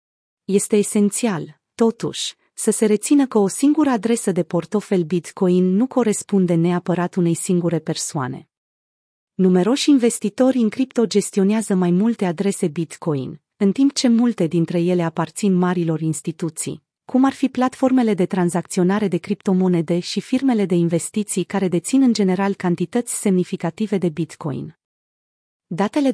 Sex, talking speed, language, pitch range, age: female, 135 wpm, Romanian, 175-225 Hz, 30-49